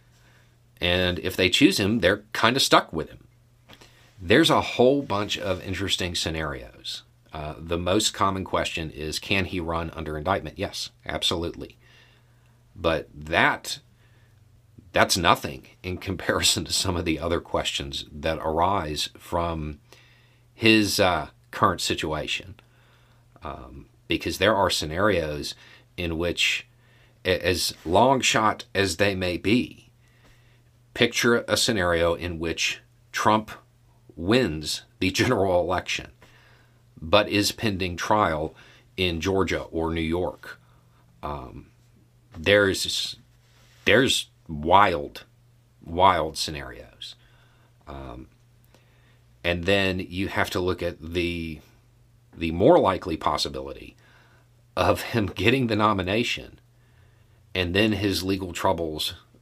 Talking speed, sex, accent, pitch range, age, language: 115 wpm, male, American, 85-120 Hz, 50-69, English